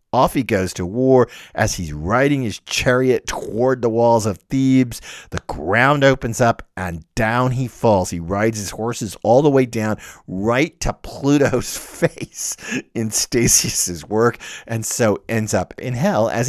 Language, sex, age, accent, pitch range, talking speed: English, male, 50-69, American, 100-140 Hz, 165 wpm